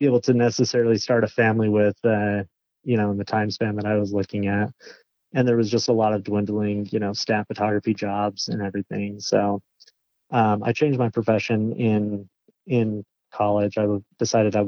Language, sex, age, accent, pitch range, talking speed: English, male, 30-49, American, 105-115 Hz, 190 wpm